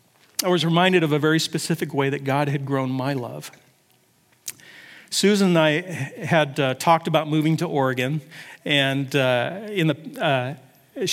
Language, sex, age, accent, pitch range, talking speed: English, male, 40-59, American, 135-170 Hz, 155 wpm